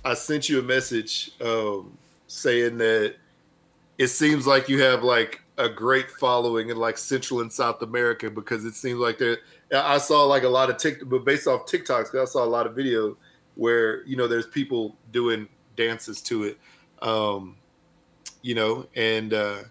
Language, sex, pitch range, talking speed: English, male, 110-130 Hz, 175 wpm